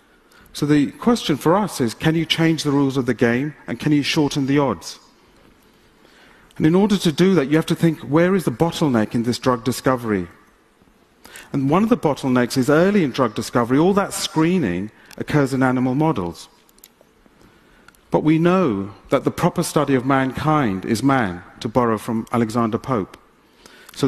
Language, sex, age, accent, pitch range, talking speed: English, male, 40-59, British, 120-165 Hz, 180 wpm